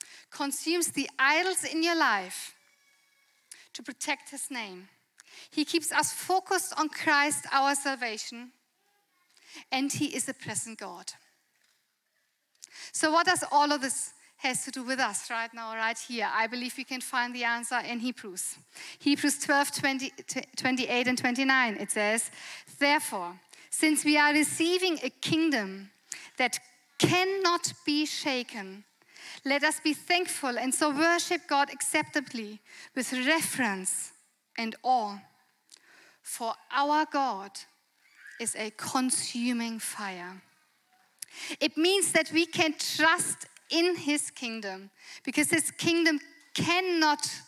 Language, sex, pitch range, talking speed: English, female, 245-315 Hz, 125 wpm